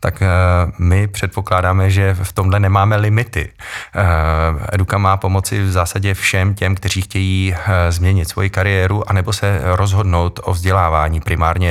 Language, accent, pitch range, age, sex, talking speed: Czech, native, 80-95 Hz, 20-39, male, 135 wpm